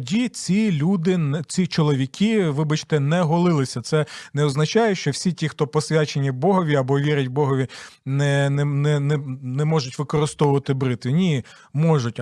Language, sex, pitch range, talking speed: Ukrainian, male, 140-185 Hz, 145 wpm